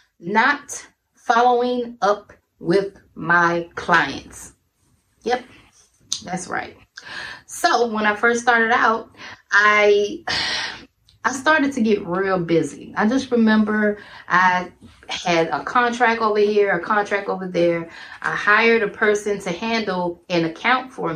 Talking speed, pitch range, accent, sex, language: 125 wpm, 185-240 Hz, American, female, English